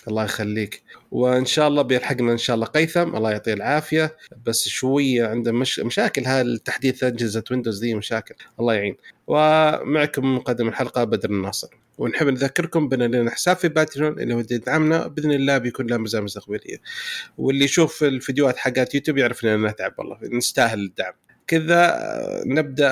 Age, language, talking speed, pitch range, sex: 30-49, Arabic, 150 wpm, 120-155 Hz, male